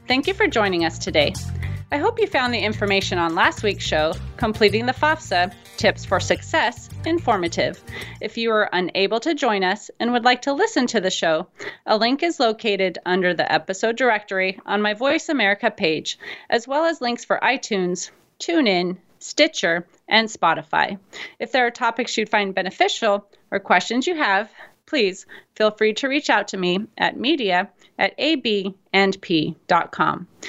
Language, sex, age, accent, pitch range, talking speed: English, female, 30-49, American, 195-275 Hz, 165 wpm